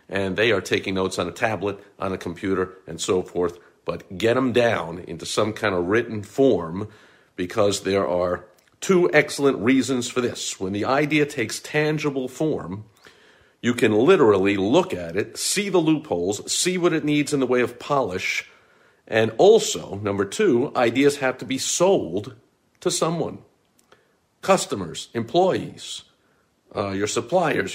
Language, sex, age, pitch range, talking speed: English, male, 50-69, 105-150 Hz, 155 wpm